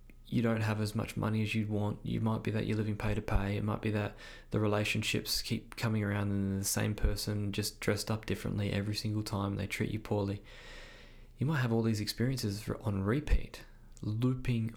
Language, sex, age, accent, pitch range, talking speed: English, male, 20-39, Australian, 105-120 Hz, 200 wpm